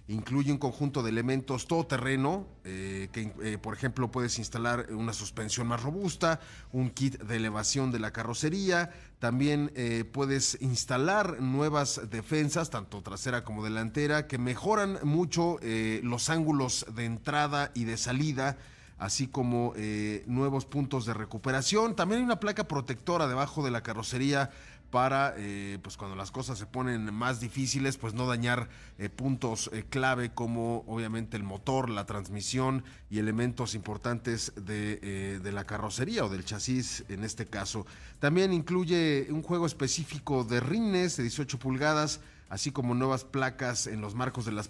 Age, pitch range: 30-49, 115-145 Hz